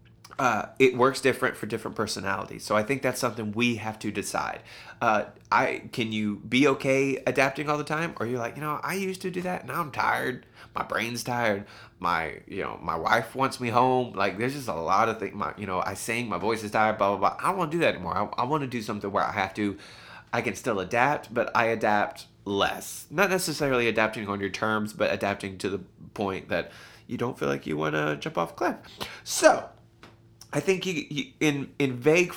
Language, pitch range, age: English, 105-130 Hz, 20-39